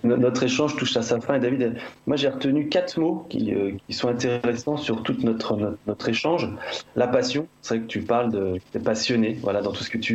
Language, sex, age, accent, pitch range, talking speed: French, male, 20-39, French, 110-140 Hz, 235 wpm